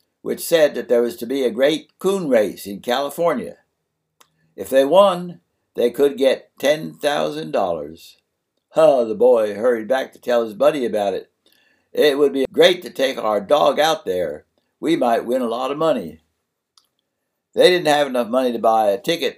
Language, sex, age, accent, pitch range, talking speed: English, male, 60-79, American, 115-155 Hz, 175 wpm